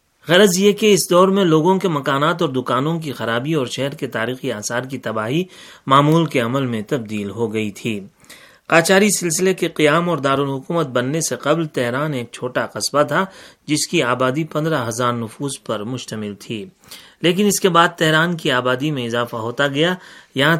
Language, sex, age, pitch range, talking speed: Urdu, male, 30-49, 125-165 Hz, 185 wpm